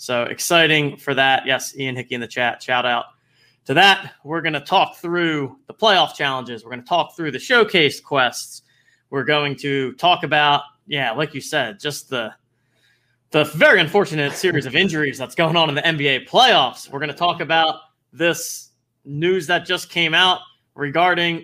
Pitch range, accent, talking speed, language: 130-170 Hz, American, 185 wpm, English